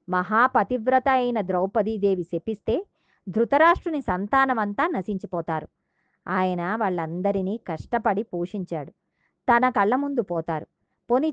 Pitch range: 185-250 Hz